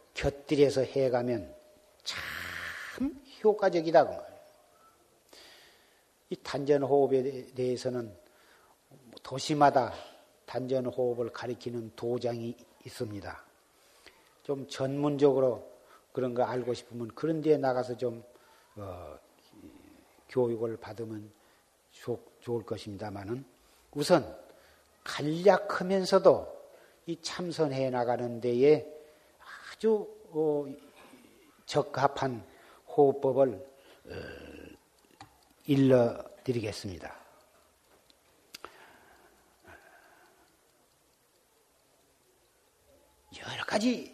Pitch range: 120-155 Hz